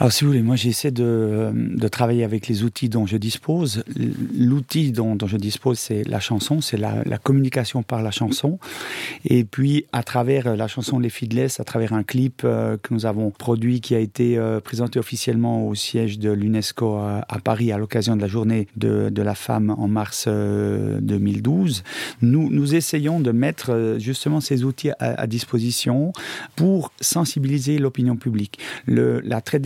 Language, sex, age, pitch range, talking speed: French, male, 40-59, 110-140 Hz, 180 wpm